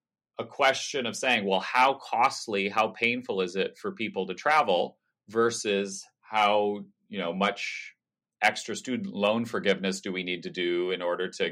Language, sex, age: English, male, 30-49